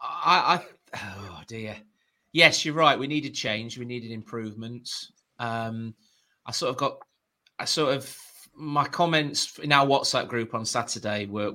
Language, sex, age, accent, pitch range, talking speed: English, male, 30-49, British, 105-130 Hz, 155 wpm